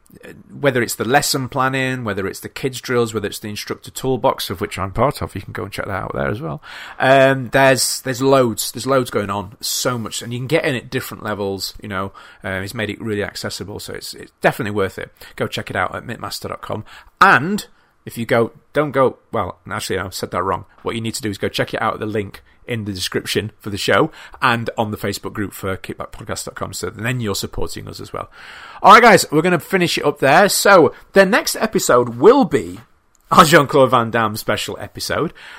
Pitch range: 105-140 Hz